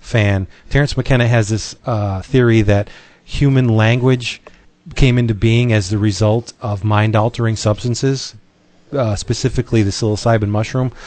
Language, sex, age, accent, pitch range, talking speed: English, male, 40-59, American, 110-135 Hz, 135 wpm